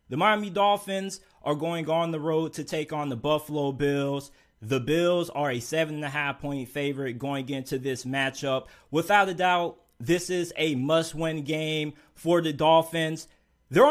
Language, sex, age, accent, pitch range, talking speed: English, male, 20-39, American, 145-215 Hz, 175 wpm